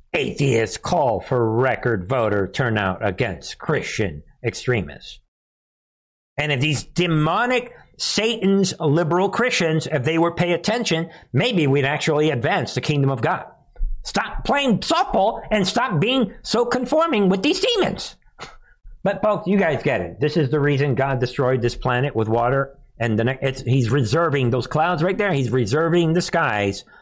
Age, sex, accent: 50-69, male, American